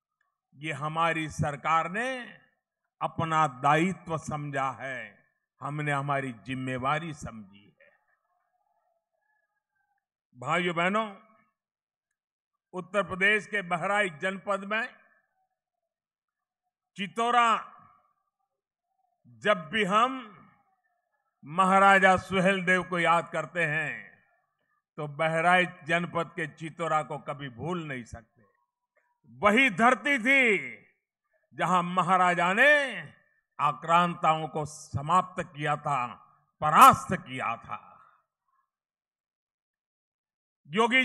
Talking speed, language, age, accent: 80 wpm, Hindi, 50-69, native